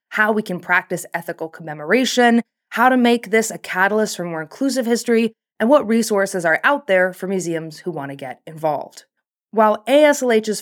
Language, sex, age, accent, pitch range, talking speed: English, female, 20-39, American, 170-225 Hz, 175 wpm